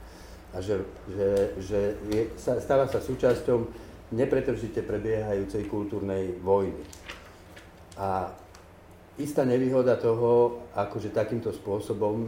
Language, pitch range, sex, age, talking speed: Slovak, 90-110 Hz, male, 50-69, 90 wpm